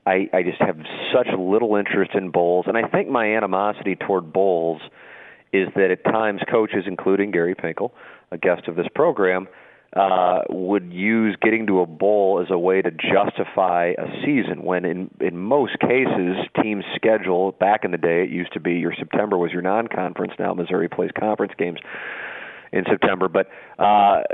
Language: English